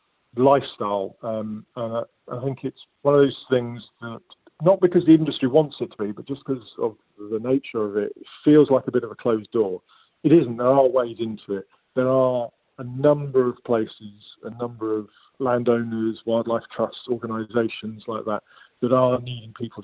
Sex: male